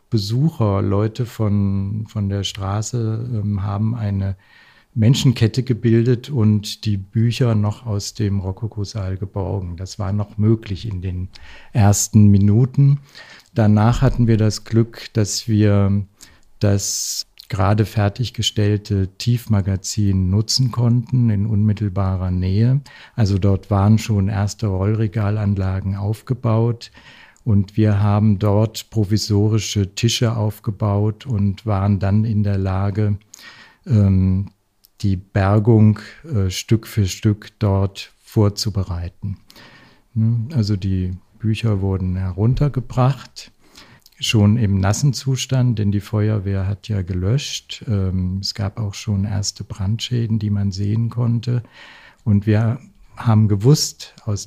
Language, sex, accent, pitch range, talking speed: German, male, German, 100-115 Hz, 110 wpm